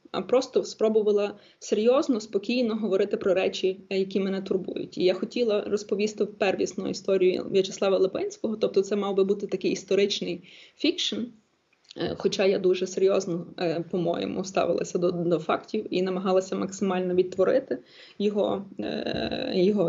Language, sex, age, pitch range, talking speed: Ukrainian, female, 20-39, 180-215 Hz, 125 wpm